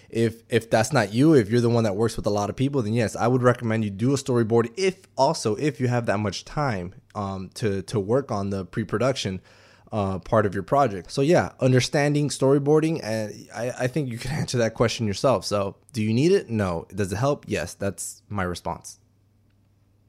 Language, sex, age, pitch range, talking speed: English, male, 20-39, 105-135 Hz, 220 wpm